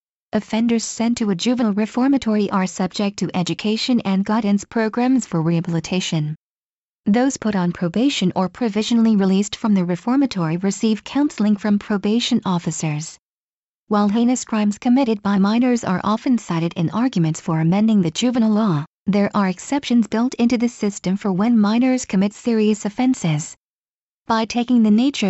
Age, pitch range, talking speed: 40-59, 195-240 Hz, 150 wpm